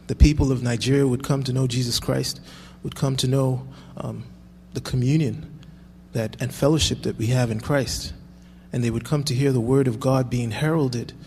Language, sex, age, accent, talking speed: English, male, 30-49, American, 195 wpm